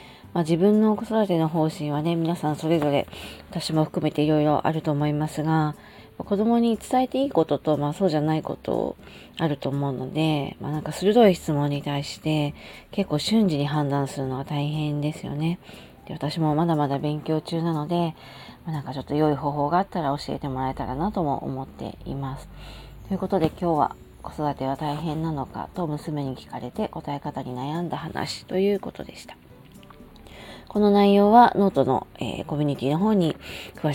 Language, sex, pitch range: Japanese, female, 145-185 Hz